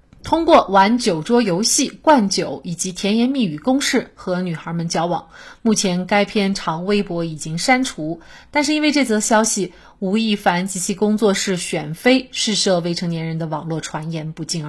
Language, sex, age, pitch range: Chinese, female, 30-49, 180-245 Hz